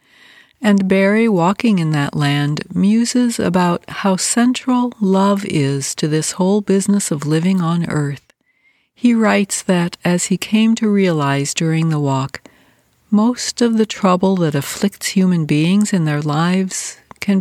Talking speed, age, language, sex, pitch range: 150 wpm, 60-79, English, female, 155-200 Hz